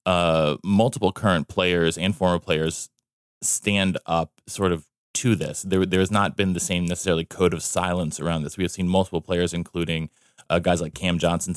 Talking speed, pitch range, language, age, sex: 190 wpm, 85-100 Hz, English, 20-39, male